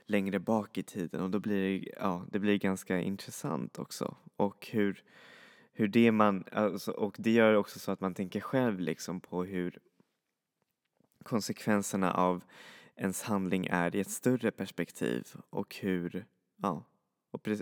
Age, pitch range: 20-39, 90-105 Hz